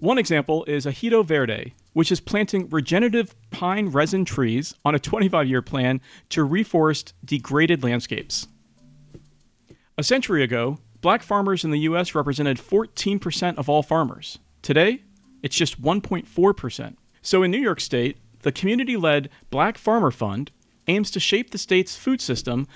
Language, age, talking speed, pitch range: English, 40-59, 140 wpm, 130-190 Hz